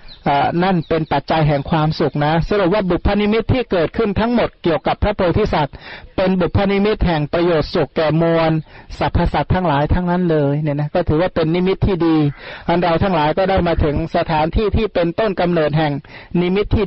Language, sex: Thai, male